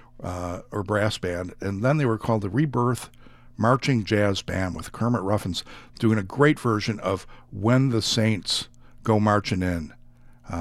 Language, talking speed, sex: English, 165 wpm, male